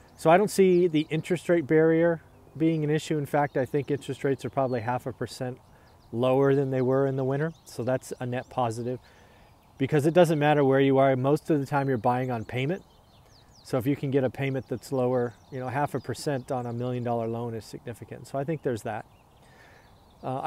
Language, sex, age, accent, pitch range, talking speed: English, male, 30-49, American, 125-150 Hz, 225 wpm